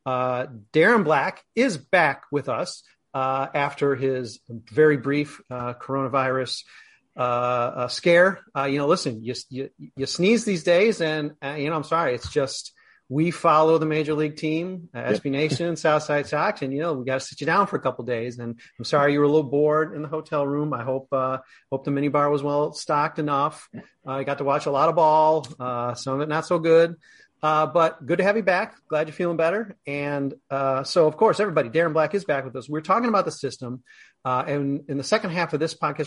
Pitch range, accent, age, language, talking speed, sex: 135-165 Hz, American, 40-59, English, 225 wpm, male